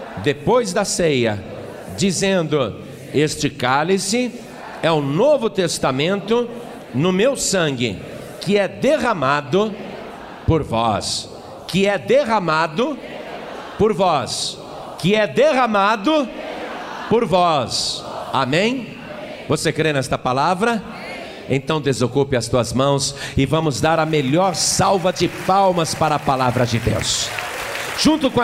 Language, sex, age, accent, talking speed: Portuguese, male, 50-69, Brazilian, 115 wpm